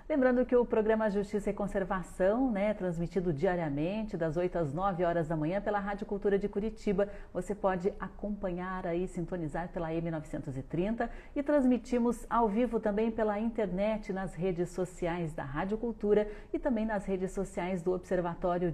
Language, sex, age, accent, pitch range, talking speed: Portuguese, female, 40-59, Brazilian, 165-205 Hz, 160 wpm